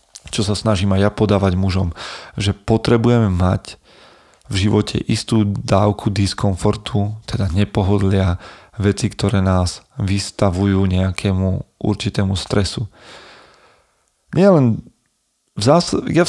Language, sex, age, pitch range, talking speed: Slovak, male, 40-59, 100-120 Hz, 105 wpm